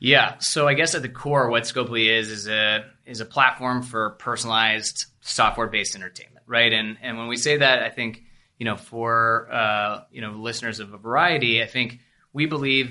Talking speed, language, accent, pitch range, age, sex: 200 wpm, English, American, 105-120 Hz, 20-39, male